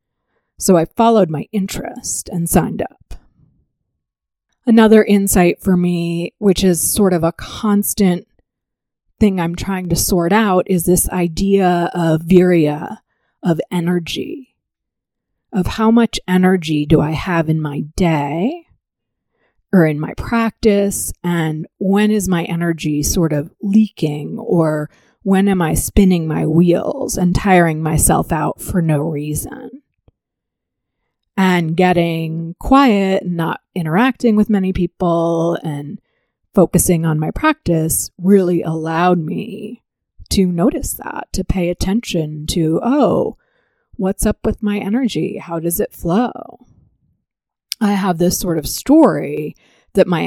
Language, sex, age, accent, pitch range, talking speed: English, female, 30-49, American, 165-205 Hz, 130 wpm